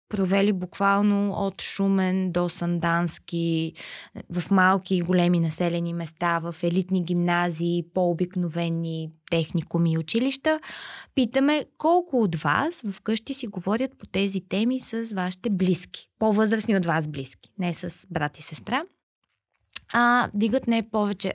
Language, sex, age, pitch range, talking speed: Bulgarian, female, 20-39, 170-225 Hz, 125 wpm